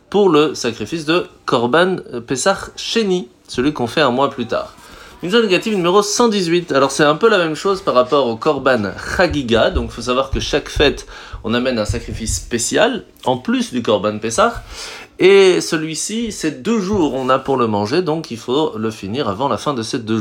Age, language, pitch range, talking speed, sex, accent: 30-49, French, 110-175 Hz, 205 wpm, male, French